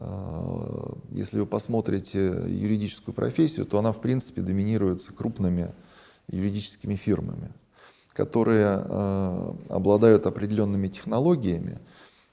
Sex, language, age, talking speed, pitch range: male, Russian, 20-39, 85 wpm, 95-115 Hz